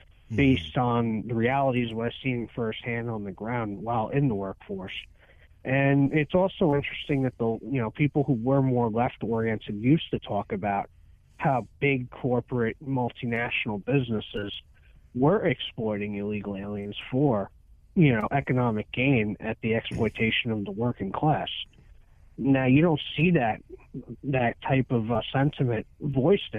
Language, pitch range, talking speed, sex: English, 105-135 Hz, 145 wpm, male